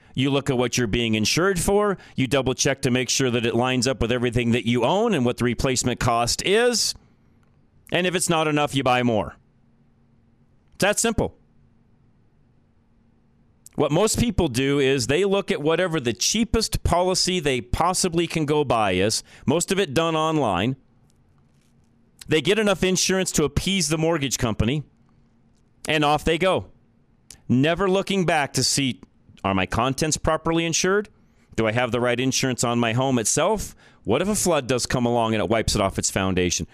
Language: English